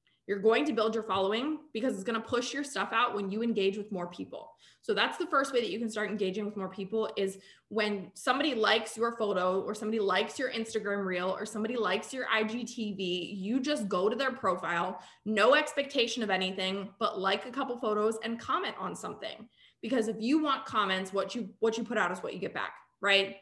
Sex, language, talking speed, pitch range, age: female, English, 220 wpm, 190-225 Hz, 20-39